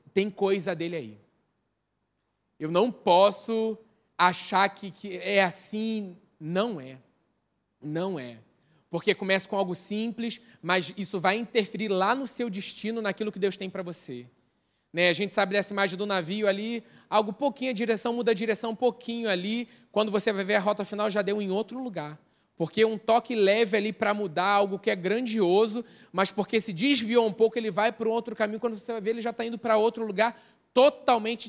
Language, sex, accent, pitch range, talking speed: Portuguese, male, Brazilian, 170-220 Hz, 190 wpm